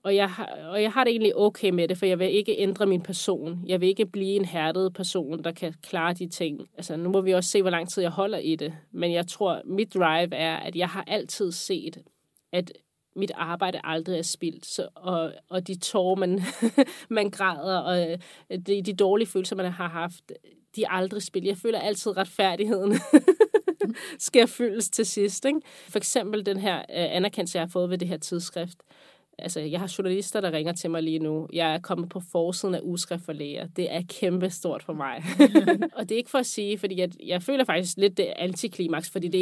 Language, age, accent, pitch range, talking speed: Danish, 30-49, native, 175-205 Hz, 220 wpm